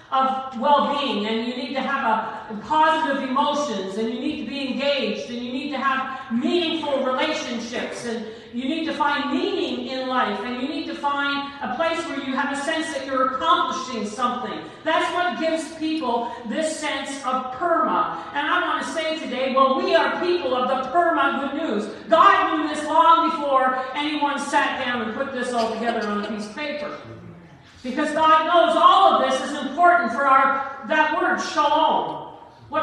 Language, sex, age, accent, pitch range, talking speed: English, female, 50-69, American, 255-305 Hz, 190 wpm